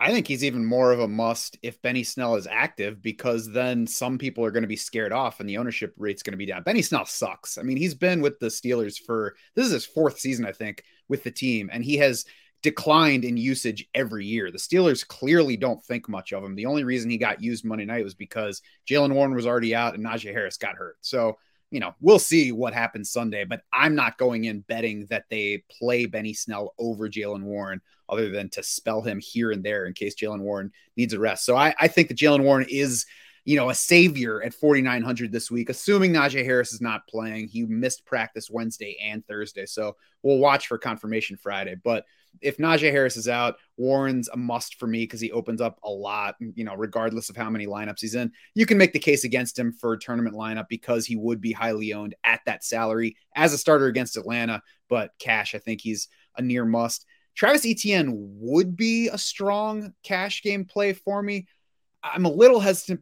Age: 30-49